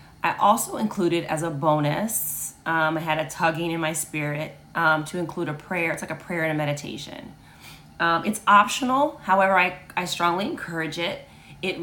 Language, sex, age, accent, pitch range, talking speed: English, female, 30-49, American, 155-175 Hz, 185 wpm